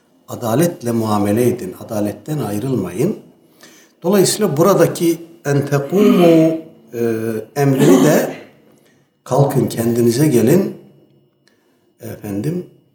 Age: 60-79